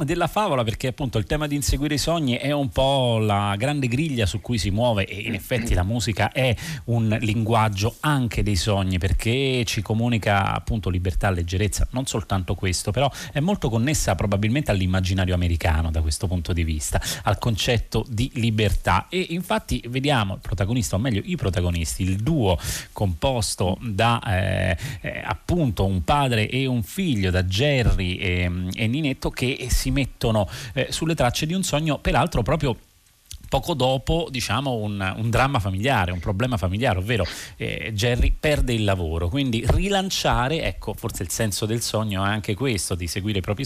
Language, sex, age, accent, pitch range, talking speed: Italian, male, 30-49, native, 95-130 Hz, 170 wpm